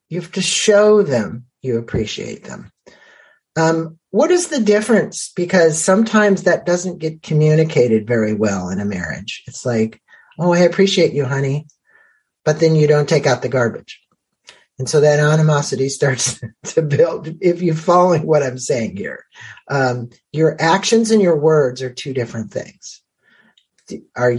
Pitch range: 125-175 Hz